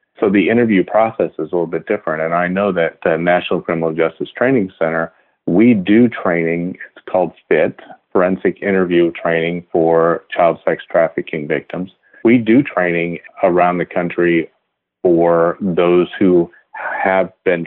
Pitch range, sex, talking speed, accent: 85-100 Hz, male, 150 wpm, American